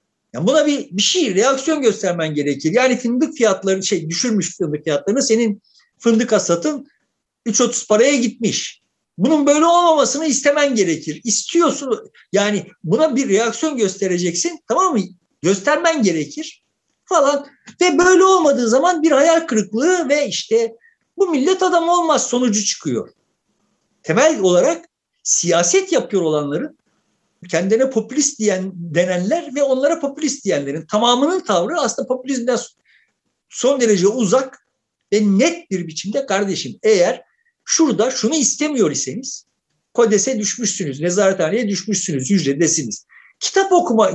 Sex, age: male, 50-69